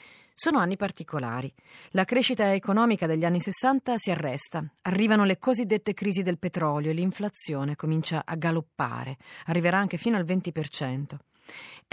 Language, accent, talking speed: Italian, native, 135 wpm